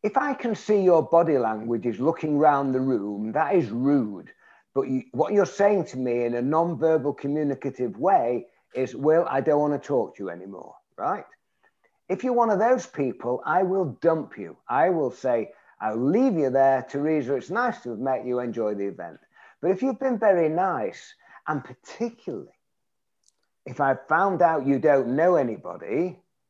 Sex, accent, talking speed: male, British, 185 wpm